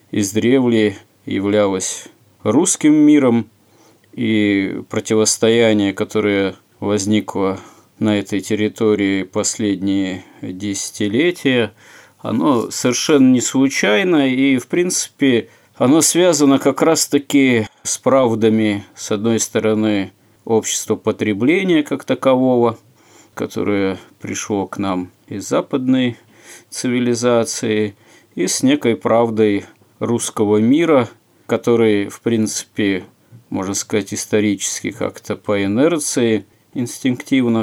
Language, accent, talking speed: Russian, native, 90 wpm